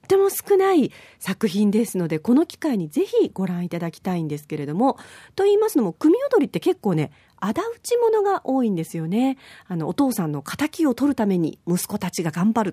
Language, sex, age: Japanese, female, 40-59